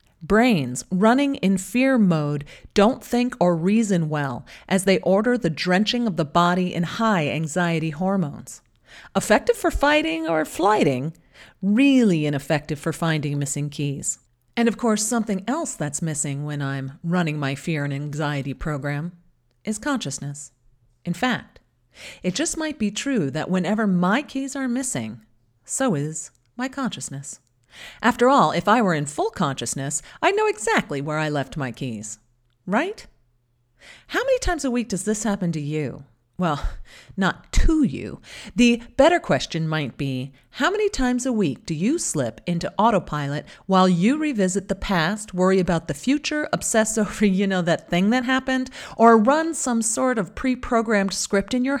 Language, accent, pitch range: English, American, 150-240 Hz